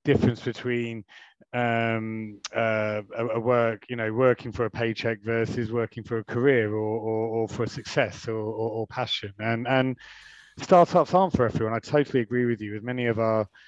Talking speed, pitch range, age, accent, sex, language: 185 wpm, 115-130 Hz, 30-49, British, male, English